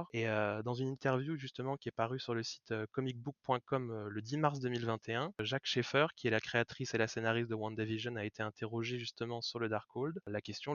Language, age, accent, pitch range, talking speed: French, 20-39, French, 110-125 Hz, 205 wpm